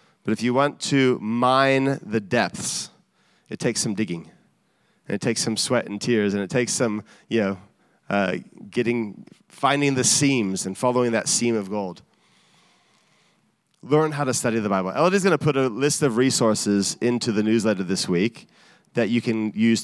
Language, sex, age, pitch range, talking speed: English, male, 30-49, 110-135 Hz, 180 wpm